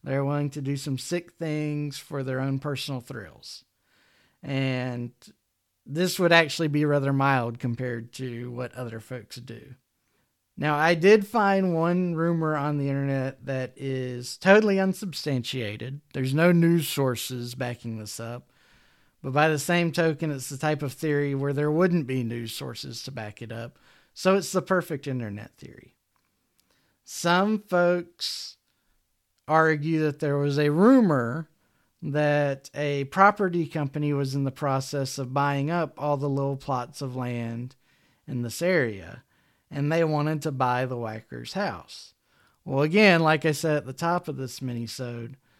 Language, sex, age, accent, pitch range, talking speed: English, male, 40-59, American, 130-160 Hz, 155 wpm